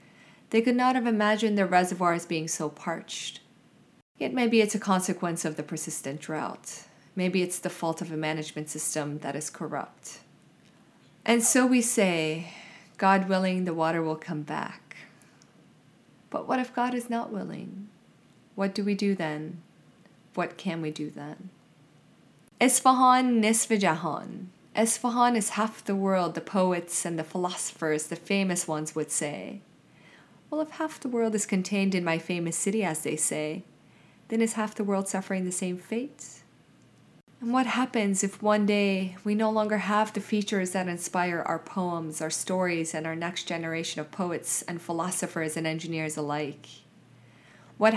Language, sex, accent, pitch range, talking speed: English, female, American, 165-205 Hz, 160 wpm